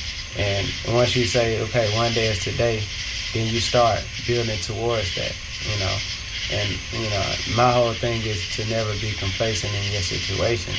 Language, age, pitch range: English, 20-39, 100-115 Hz